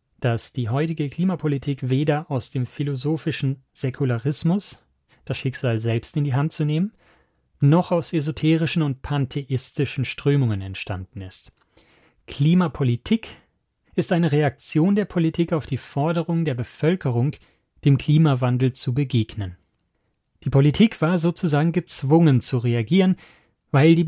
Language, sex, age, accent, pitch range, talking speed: German, male, 40-59, German, 125-155 Hz, 120 wpm